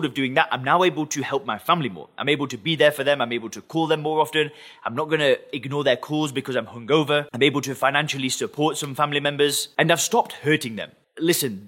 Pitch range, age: 140-180 Hz, 20-39